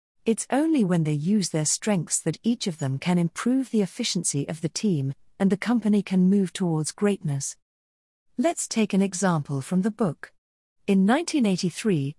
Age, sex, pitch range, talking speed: 40-59, female, 155-220 Hz, 165 wpm